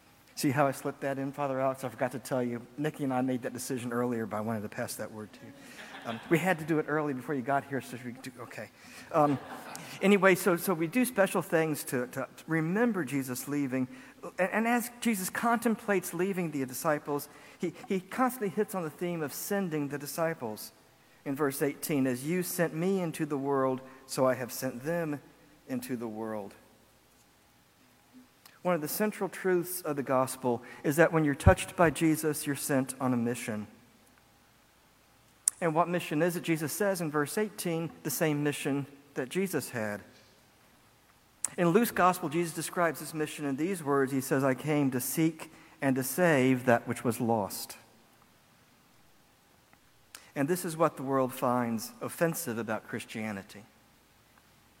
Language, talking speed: English, 180 wpm